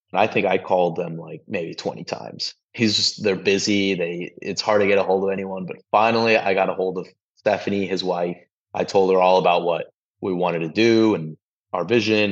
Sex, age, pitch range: male, 20-39, 95-110 Hz